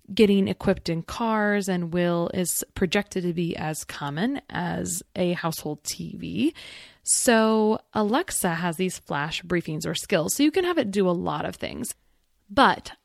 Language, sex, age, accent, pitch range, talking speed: English, female, 20-39, American, 175-215 Hz, 160 wpm